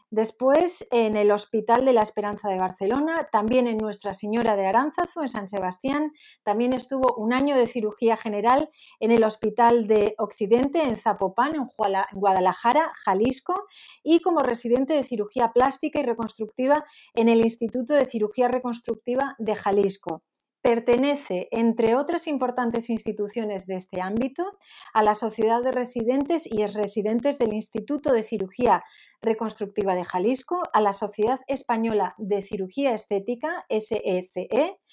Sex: female